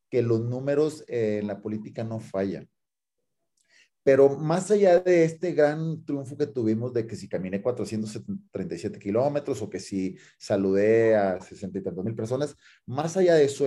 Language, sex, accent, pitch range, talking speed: Spanish, male, Mexican, 105-140 Hz, 155 wpm